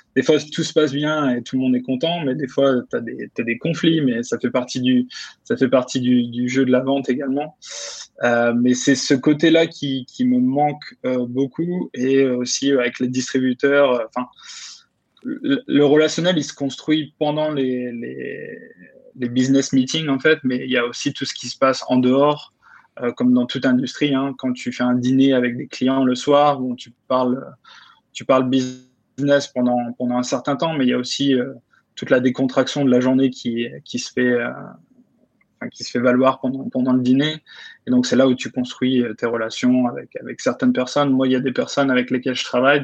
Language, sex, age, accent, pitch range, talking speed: French, male, 20-39, French, 125-140 Hz, 215 wpm